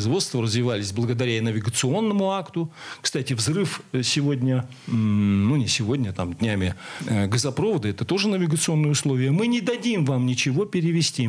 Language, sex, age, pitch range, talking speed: Russian, male, 40-59, 125-175 Hz, 130 wpm